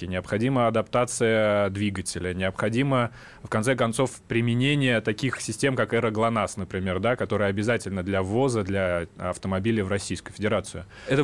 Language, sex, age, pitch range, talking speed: Russian, male, 20-39, 110-130 Hz, 135 wpm